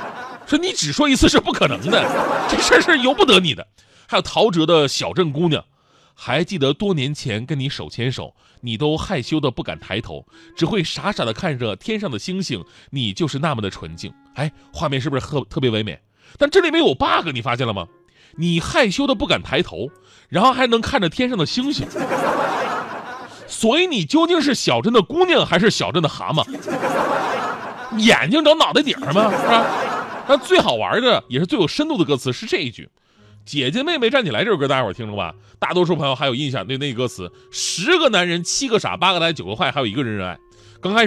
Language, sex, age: Chinese, male, 30-49